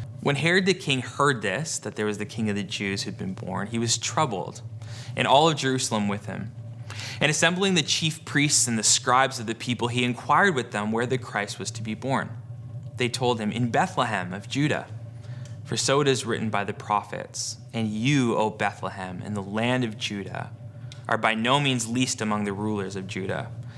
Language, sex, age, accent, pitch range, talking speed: English, male, 20-39, American, 110-130 Hz, 205 wpm